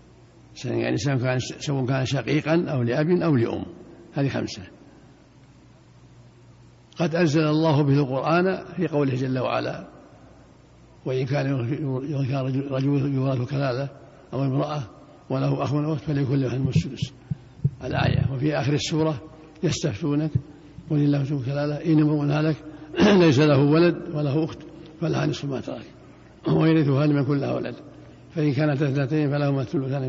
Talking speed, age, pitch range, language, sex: 130 wpm, 60-79, 130-155 Hz, Arabic, male